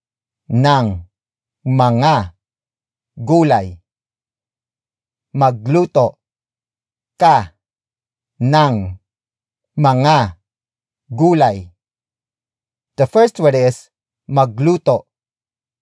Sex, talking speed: male, 50 wpm